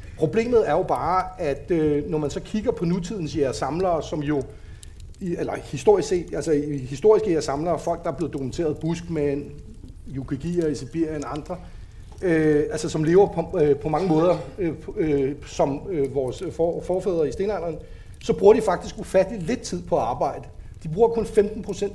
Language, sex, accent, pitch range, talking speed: Danish, male, native, 140-185 Hz, 185 wpm